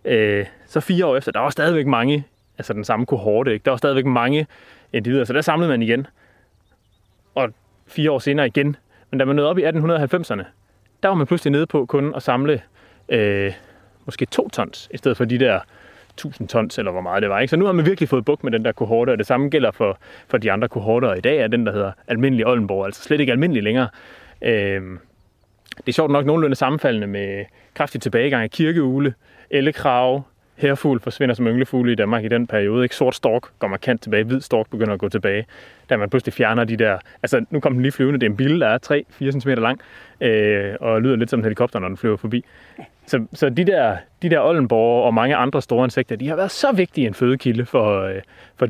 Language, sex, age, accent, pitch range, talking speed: Danish, male, 30-49, native, 105-140 Hz, 220 wpm